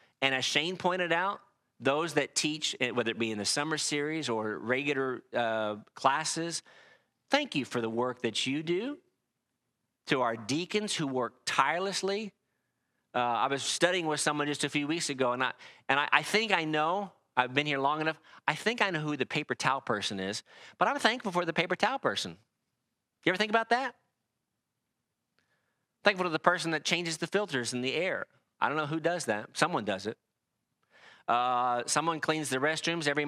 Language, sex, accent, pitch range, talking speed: English, male, American, 125-175 Hz, 190 wpm